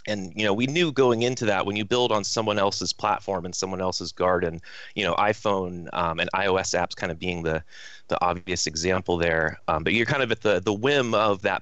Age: 30-49